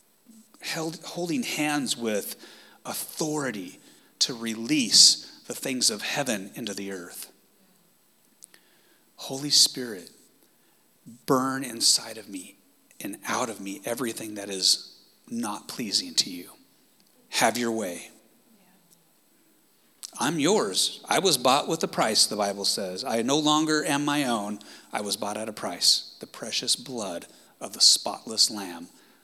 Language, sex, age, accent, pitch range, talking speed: English, male, 30-49, American, 110-145 Hz, 130 wpm